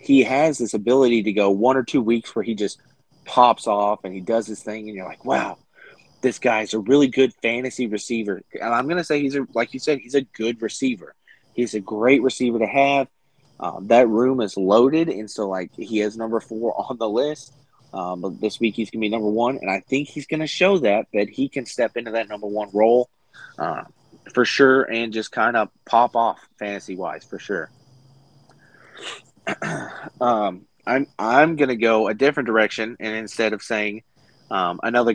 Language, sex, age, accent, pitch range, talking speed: English, male, 30-49, American, 110-135 Hz, 205 wpm